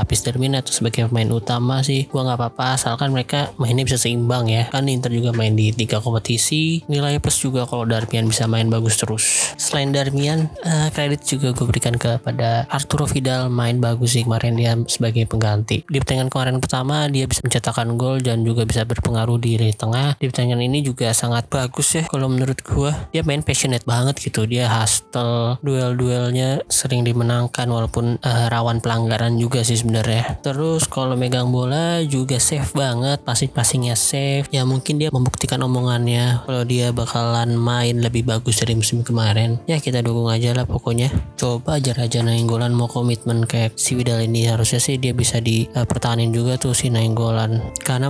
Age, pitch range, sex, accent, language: 20-39, 115-135 Hz, male, Indonesian, Chinese